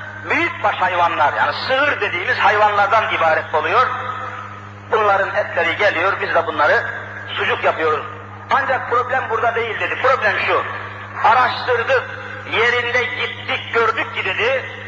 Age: 50-69